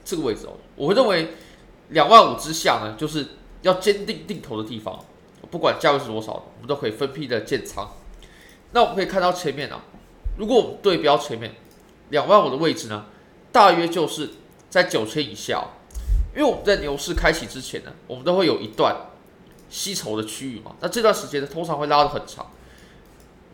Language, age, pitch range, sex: Chinese, 20-39, 115-170 Hz, male